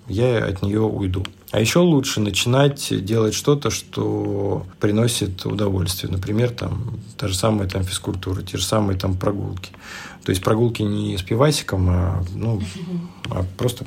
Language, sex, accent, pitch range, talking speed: Russian, male, native, 95-125 Hz, 145 wpm